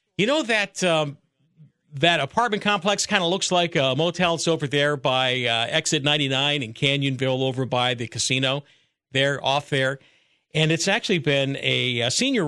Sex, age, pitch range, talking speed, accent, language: male, 50-69, 130-165 Hz, 175 wpm, American, English